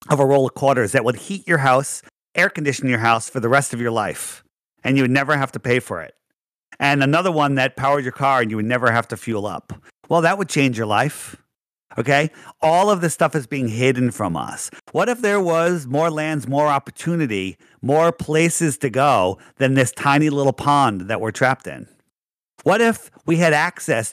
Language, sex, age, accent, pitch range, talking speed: English, male, 40-59, American, 125-155 Hz, 210 wpm